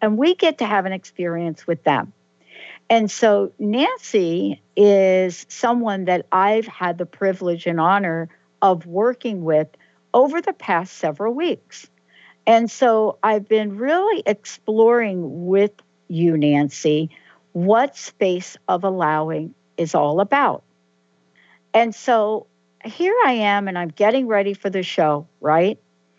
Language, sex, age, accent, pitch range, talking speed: English, female, 60-79, American, 175-235 Hz, 135 wpm